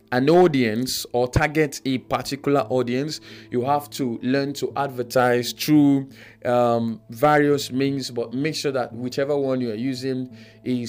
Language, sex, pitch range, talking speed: English, male, 115-145 Hz, 150 wpm